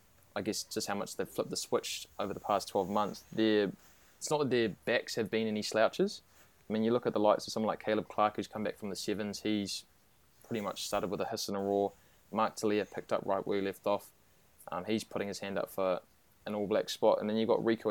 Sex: male